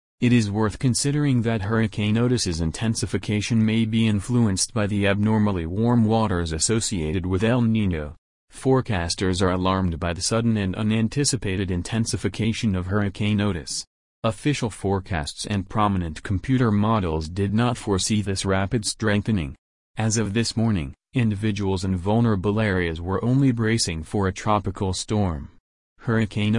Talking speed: 135 wpm